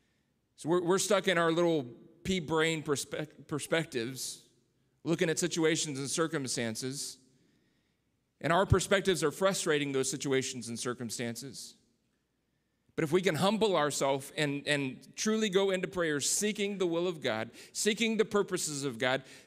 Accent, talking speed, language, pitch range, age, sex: American, 140 wpm, English, 135-185 Hz, 40-59, male